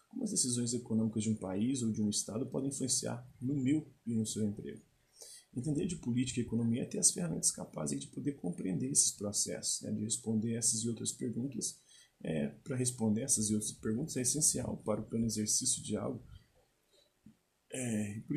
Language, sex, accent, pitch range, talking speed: Portuguese, male, Brazilian, 110-125 Hz, 185 wpm